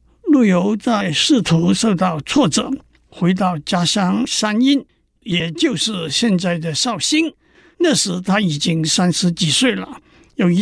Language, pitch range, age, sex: Chinese, 175-250 Hz, 60-79, male